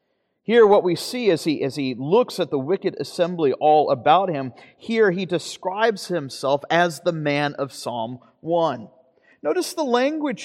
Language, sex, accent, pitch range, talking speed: English, male, American, 140-200 Hz, 165 wpm